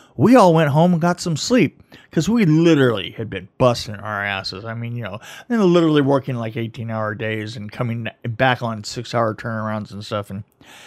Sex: male